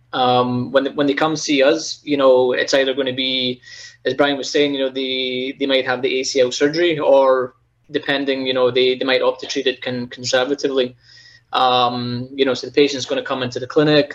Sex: male